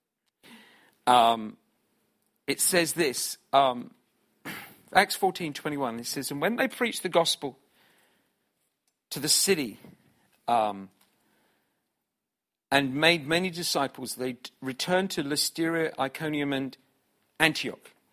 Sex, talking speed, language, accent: male, 115 wpm, English, British